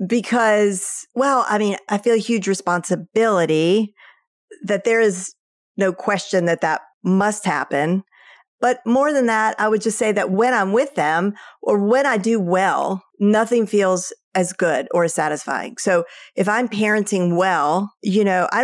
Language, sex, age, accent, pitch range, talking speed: English, female, 40-59, American, 175-220 Hz, 165 wpm